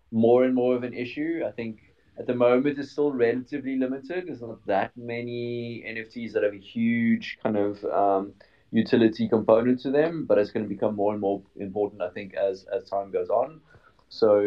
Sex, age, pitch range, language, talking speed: male, 20-39, 95-120 Hz, English, 200 wpm